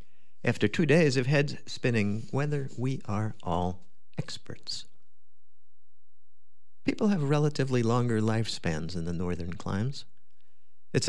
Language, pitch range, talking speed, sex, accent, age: English, 100-135 Hz, 115 wpm, male, American, 50-69